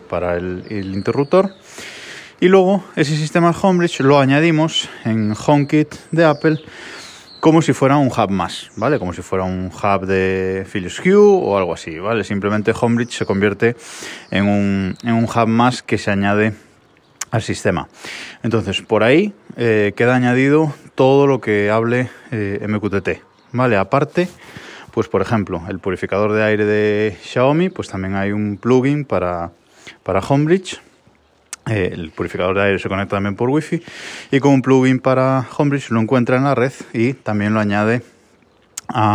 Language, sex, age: Spanish, male, 20-39